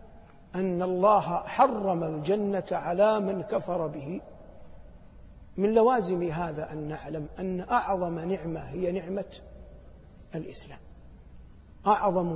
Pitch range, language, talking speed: 165-200 Hz, Arabic, 95 wpm